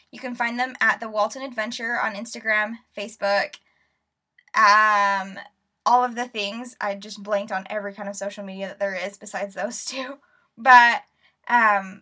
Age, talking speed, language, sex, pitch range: 10-29, 165 wpm, English, female, 205-255 Hz